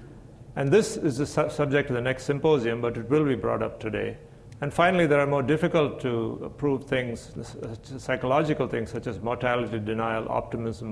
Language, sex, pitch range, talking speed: English, male, 115-140 Hz, 175 wpm